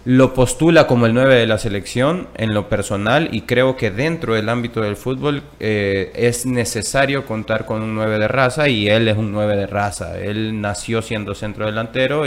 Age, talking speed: 30-49, 190 wpm